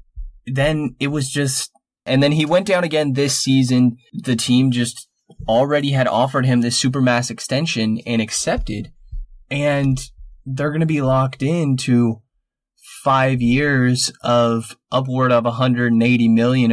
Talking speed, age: 135 wpm, 20-39